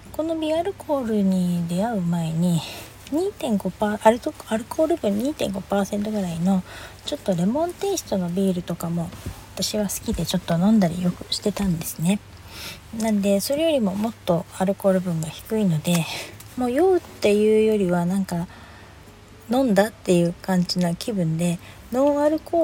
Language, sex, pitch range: Japanese, female, 170-215 Hz